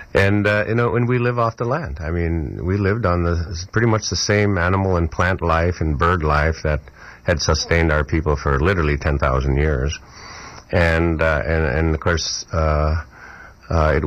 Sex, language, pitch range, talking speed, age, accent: male, English, 80-95 Hz, 190 wpm, 50-69, American